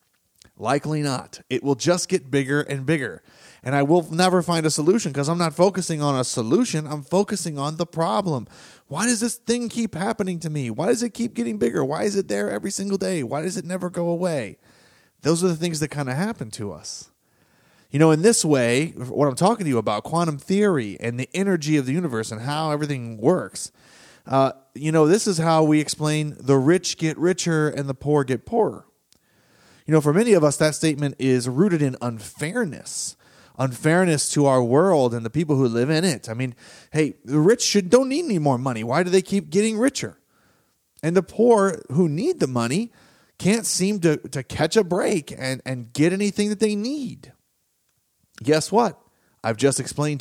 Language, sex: English, male